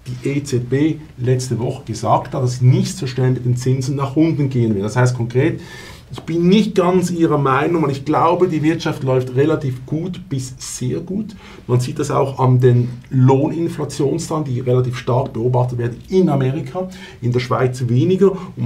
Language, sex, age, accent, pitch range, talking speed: German, male, 50-69, Austrian, 125-160 Hz, 185 wpm